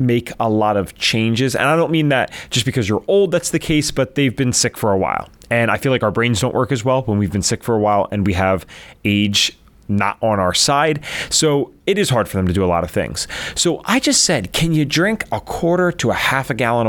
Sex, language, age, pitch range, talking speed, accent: male, English, 30-49, 95-145 Hz, 265 wpm, American